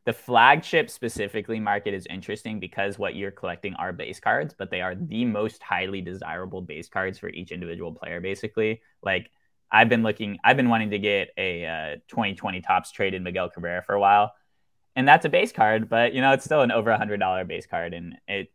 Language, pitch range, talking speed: English, 100-125 Hz, 205 wpm